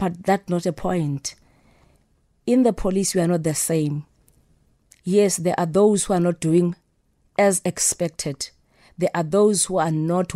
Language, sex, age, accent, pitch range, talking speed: English, female, 30-49, South African, 160-185 Hz, 170 wpm